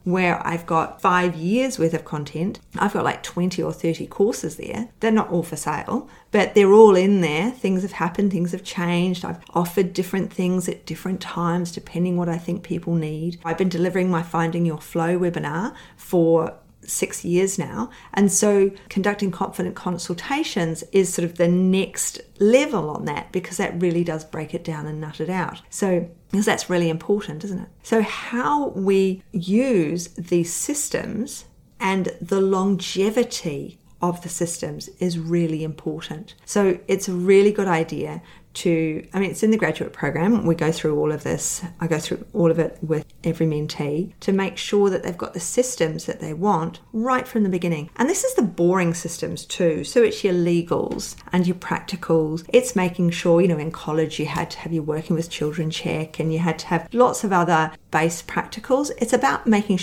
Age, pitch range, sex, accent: 40-59, 165-195 Hz, female, Australian